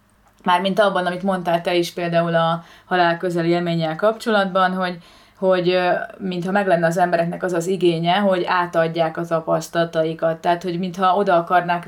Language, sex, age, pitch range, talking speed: Hungarian, female, 30-49, 165-185 Hz, 160 wpm